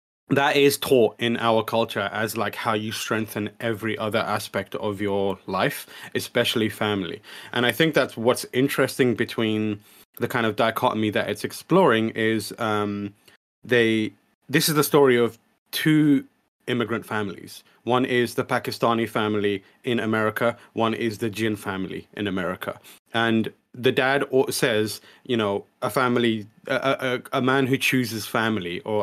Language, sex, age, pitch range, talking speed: English, male, 30-49, 105-125 Hz, 155 wpm